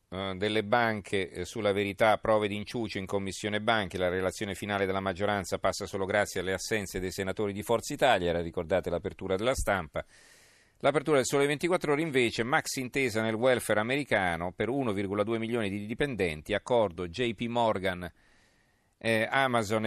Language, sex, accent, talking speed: Italian, male, native, 150 wpm